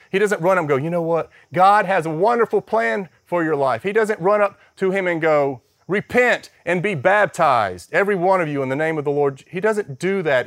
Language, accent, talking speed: English, American, 245 wpm